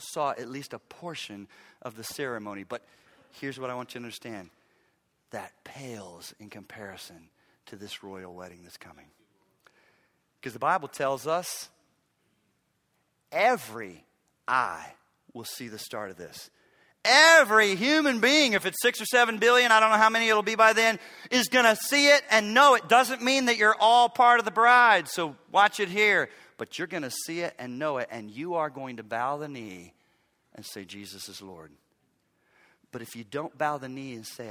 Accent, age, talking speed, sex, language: American, 40-59, 190 wpm, male, English